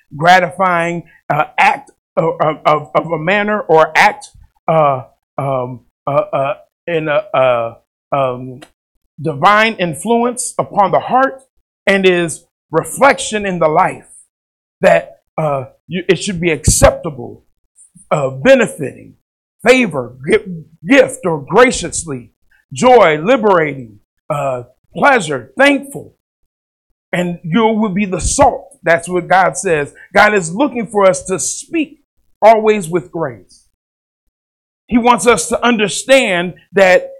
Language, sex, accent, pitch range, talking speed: English, male, American, 150-220 Hz, 115 wpm